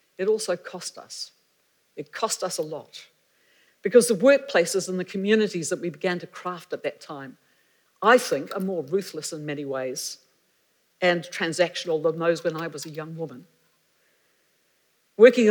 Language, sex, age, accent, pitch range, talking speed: English, female, 60-79, British, 160-205 Hz, 165 wpm